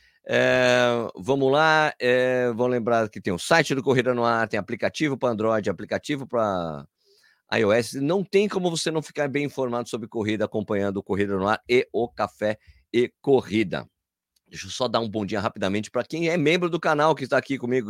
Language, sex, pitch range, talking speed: Portuguese, male, 100-135 Hz, 195 wpm